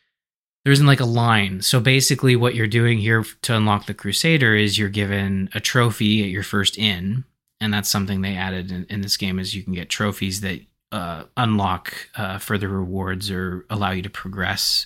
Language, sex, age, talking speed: English, male, 20-39, 200 wpm